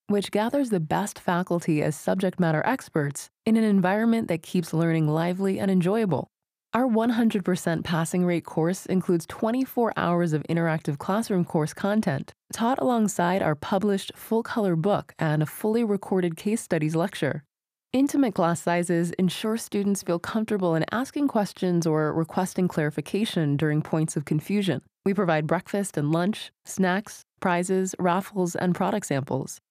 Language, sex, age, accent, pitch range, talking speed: English, female, 20-39, American, 160-205 Hz, 145 wpm